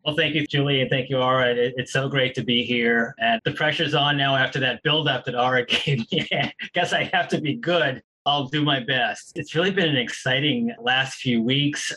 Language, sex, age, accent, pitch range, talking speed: English, male, 30-49, American, 130-165 Hz, 225 wpm